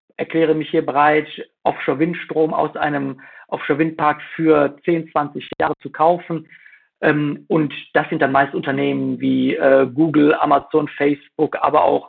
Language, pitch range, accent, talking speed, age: German, 145-165 Hz, German, 130 wpm, 50-69